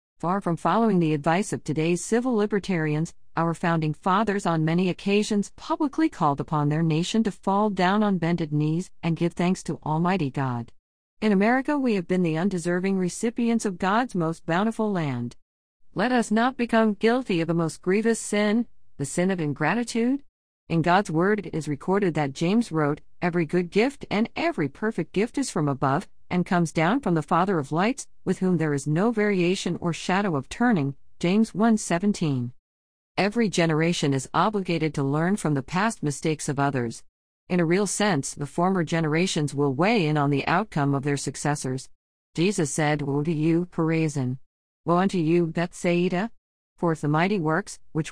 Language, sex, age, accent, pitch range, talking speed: English, female, 50-69, American, 150-205 Hz, 180 wpm